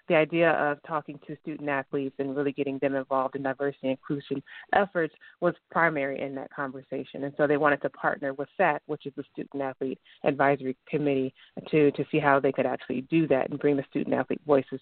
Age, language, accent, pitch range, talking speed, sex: 30-49, English, American, 140-150 Hz, 200 wpm, female